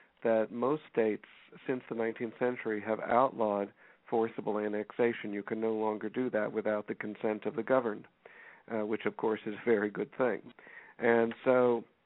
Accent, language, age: American, English, 50-69